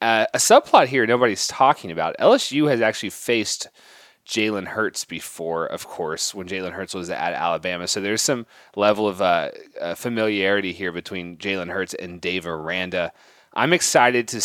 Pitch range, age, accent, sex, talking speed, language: 95-120 Hz, 30-49, American, male, 165 wpm, English